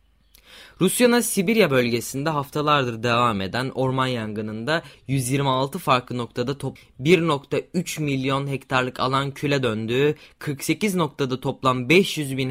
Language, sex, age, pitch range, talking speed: Turkish, male, 20-39, 120-150 Hz, 110 wpm